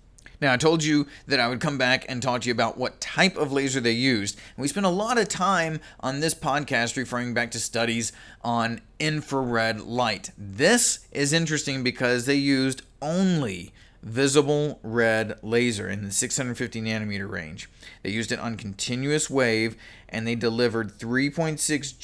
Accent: American